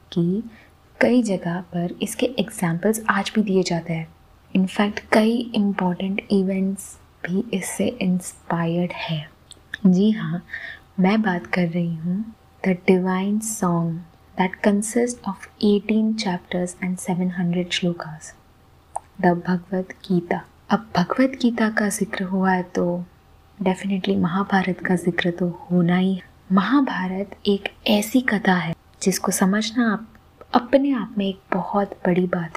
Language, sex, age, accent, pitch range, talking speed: Hindi, female, 20-39, native, 180-215 Hz, 130 wpm